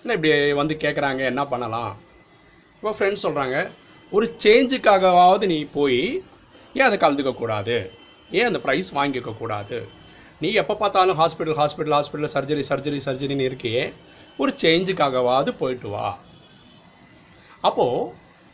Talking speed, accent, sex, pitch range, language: 115 wpm, native, male, 140-205 Hz, Tamil